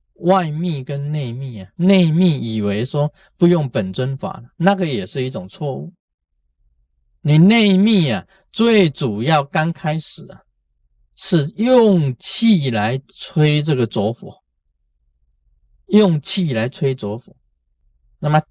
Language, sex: Chinese, male